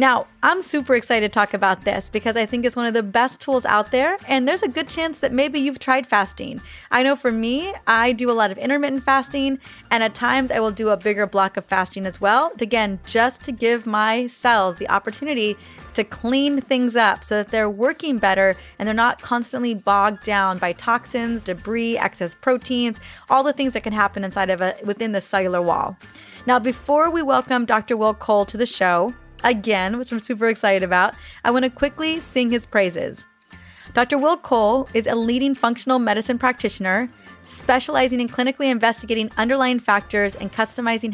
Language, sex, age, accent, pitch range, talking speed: English, female, 30-49, American, 205-255 Hz, 195 wpm